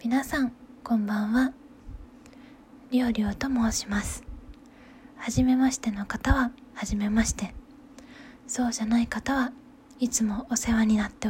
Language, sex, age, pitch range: Japanese, female, 20-39, 225-270 Hz